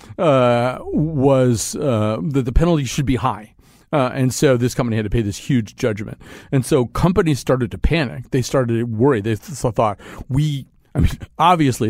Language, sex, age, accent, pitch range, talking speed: English, male, 40-59, American, 120-150 Hz, 180 wpm